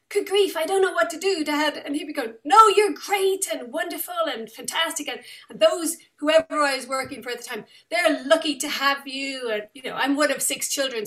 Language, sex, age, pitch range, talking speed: English, female, 40-59, 225-295 Hz, 240 wpm